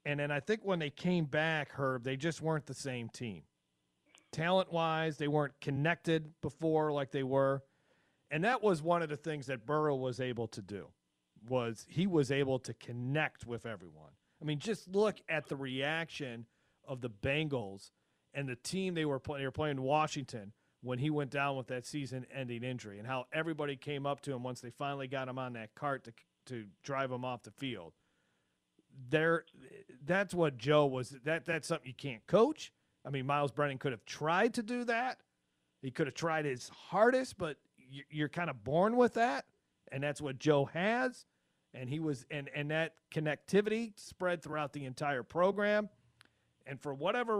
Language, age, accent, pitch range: English, 40-59, American, 130-175 Hz